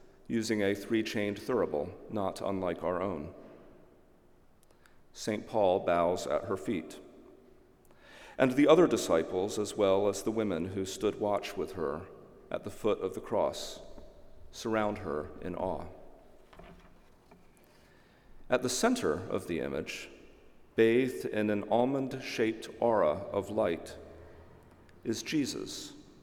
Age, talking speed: 40-59, 120 wpm